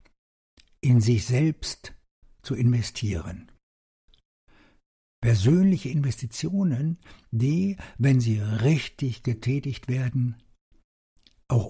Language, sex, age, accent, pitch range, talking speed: German, male, 60-79, German, 105-135 Hz, 70 wpm